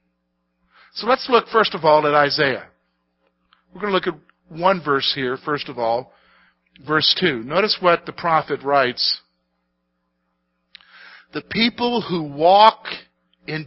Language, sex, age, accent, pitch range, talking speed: English, male, 50-69, American, 120-185 Hz, 135 wpm